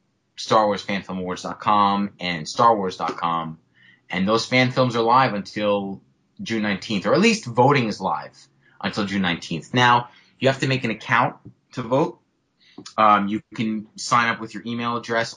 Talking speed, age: 150 wpm, 30-49